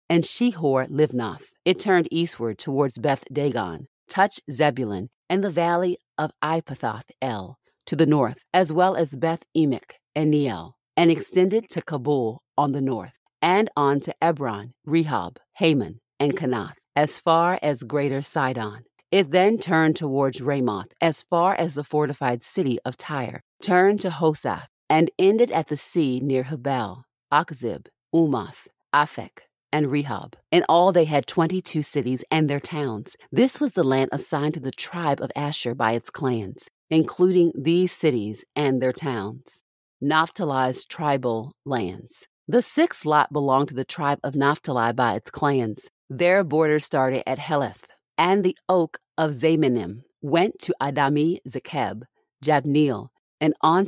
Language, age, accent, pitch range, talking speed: English, 40-59, American, 130-165 Hz, 150 wpm